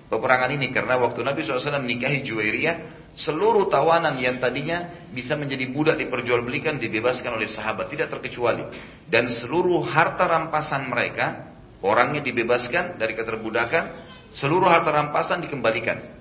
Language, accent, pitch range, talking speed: Indonesian, native, 105-145 Hz, 125 wpm